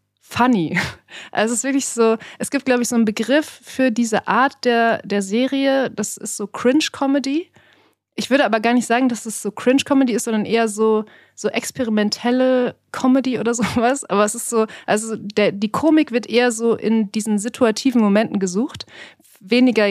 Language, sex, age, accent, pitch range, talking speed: German, female, 30-49, German, 205-245 Hz, 175 wpm